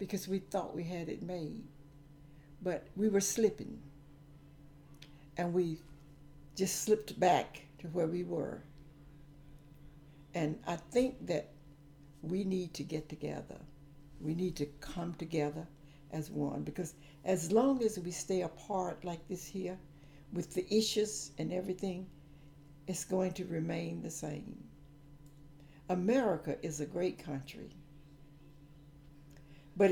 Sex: female